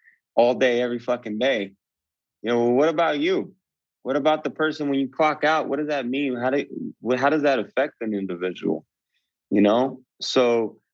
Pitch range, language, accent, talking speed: 115-135 Hz, English, American, 180 wpm